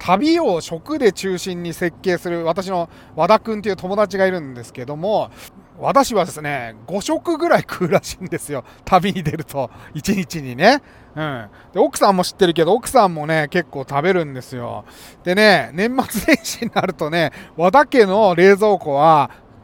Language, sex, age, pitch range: Japanese, male, 30-49, 150-225 Hz